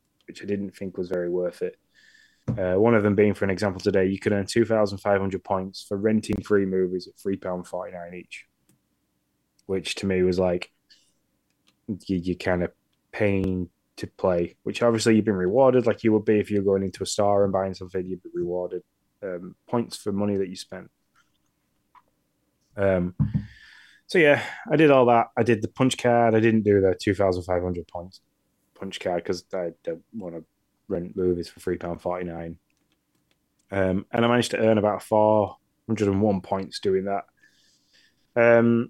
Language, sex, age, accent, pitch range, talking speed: English, male, 20-39, British, 95-115 Hz, 170 wpm